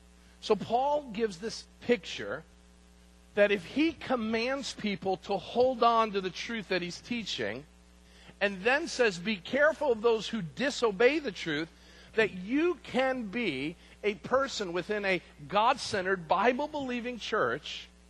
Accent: American